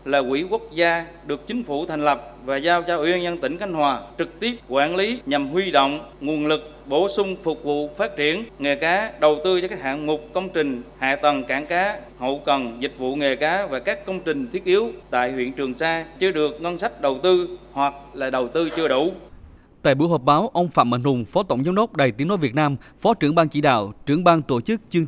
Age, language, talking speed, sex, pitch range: 20-39, Vietnamese, 245 wpm, male, 135-175 Hz